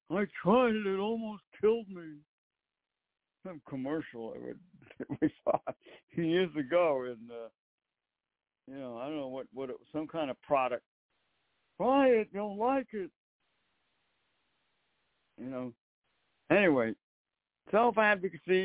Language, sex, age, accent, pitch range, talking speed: English, male, 60-79, American, 140-185 Hz, 120 wpm